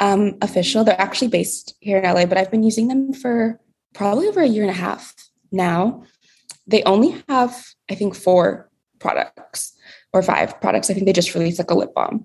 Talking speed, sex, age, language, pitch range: 200 wpm, female, 20-39, English, 180-225 Hz